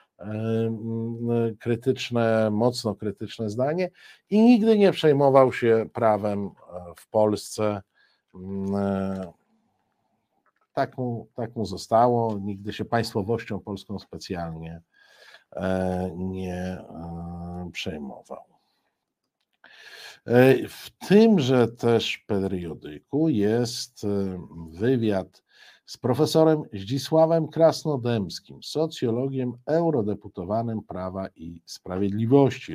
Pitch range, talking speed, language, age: 95-125 Hz, 70 wpm, Polish, 50-69